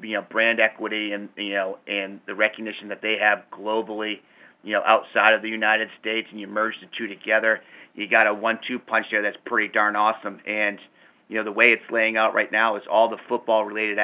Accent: American